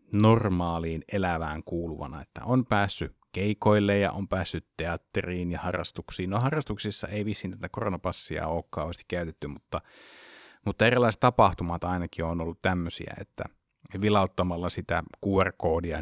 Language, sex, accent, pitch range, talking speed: Finnish, male, native, 90-105 Hz, 125 wpm